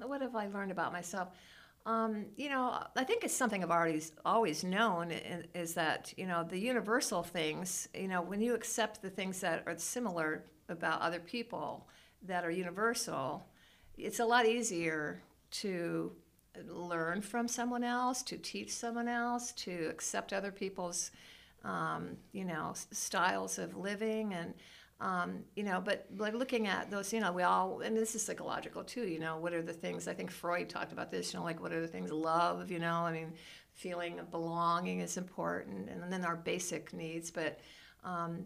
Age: 50-69